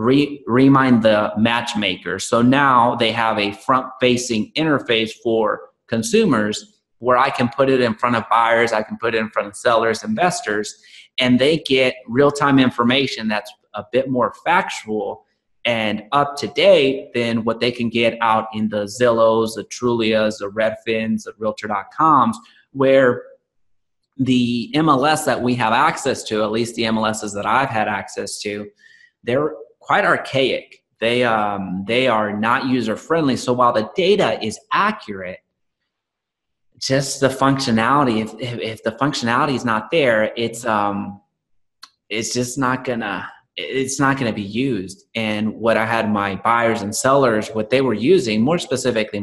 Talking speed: 160 wpm